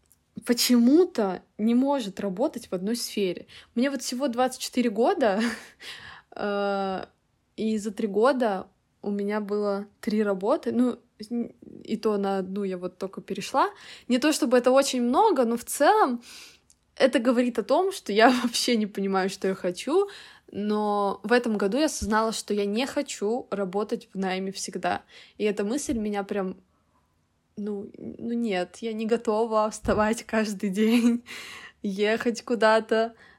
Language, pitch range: Russian, 200-245 Hz